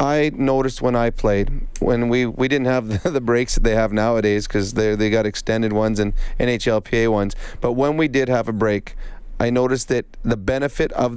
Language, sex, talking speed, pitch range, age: English, male, 210 wpm, 115-135 Hz, 30-49